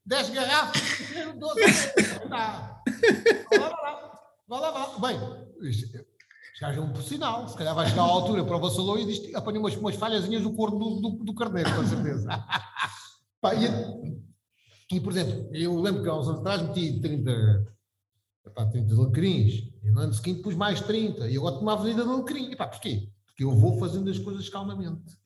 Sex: male